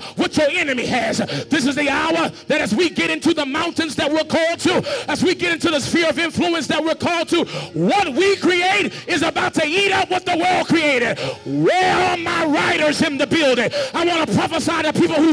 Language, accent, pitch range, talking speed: English, American, 290-335 Hz, 225 wpm